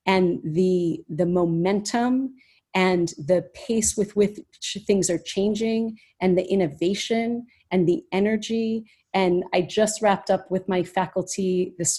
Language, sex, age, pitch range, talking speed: English, female, 40-59, 180-215 Hz, 135 wpm